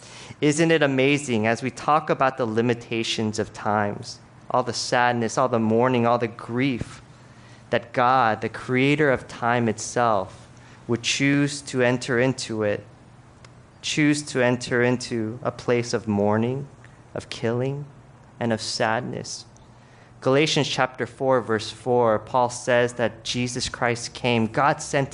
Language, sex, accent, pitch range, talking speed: English, male, American, 120-150 Hz, 140 wpm